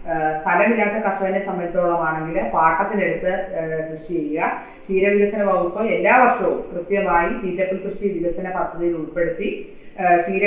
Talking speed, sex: 110 wpm, female